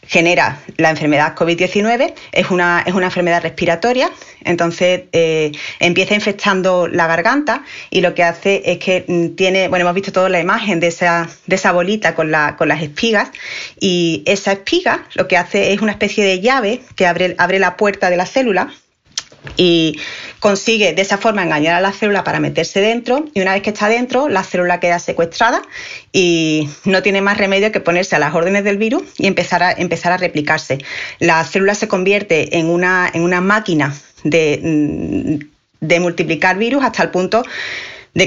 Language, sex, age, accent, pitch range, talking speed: Spanish, female, 30-49, Spanish, 170-200 Hz, 170 wpm